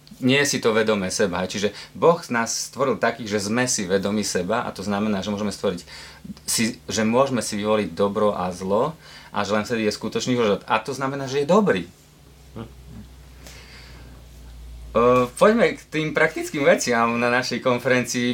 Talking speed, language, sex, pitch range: 160 wpm, Slovak, male, 120-145 Hz